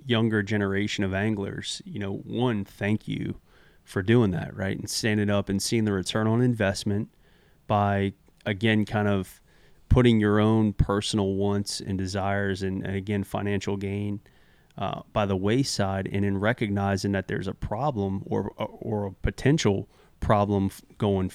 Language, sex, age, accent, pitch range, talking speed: English, male, 30-49, American, 100-115 Hz, 155 wpm